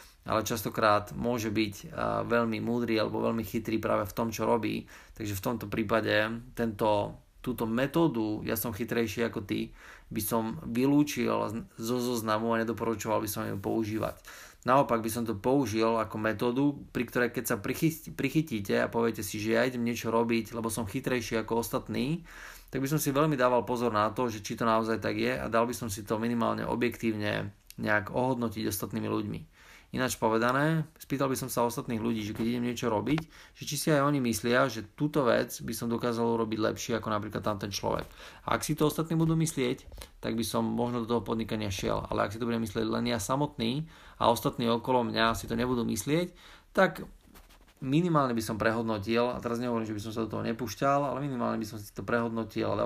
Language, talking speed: Slovak, 200 wpm